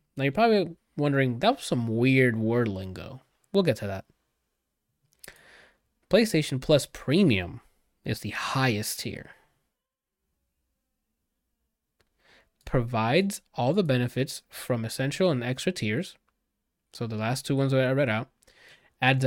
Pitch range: 115-145 Hz